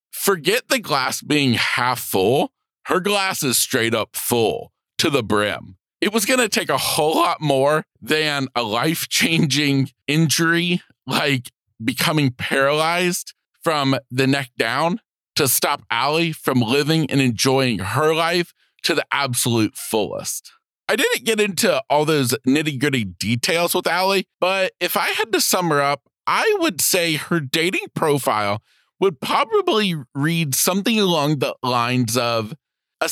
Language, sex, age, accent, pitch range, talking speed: English, male, 40-59, American, 135-185 Hz, 145 wpm